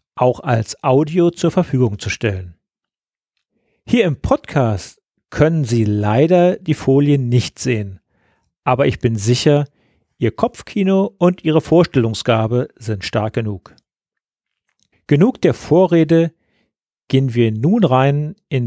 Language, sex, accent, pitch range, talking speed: German, male, German, 120-160 Hz, 120 wpm